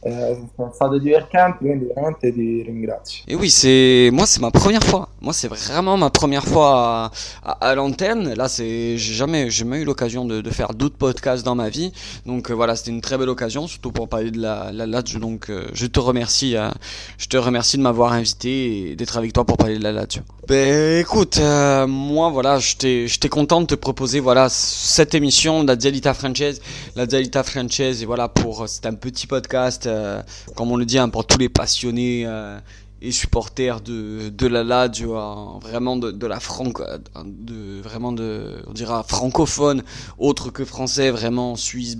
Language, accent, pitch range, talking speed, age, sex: French, French, 110-130 Hz, 195 wpm, 20-39, male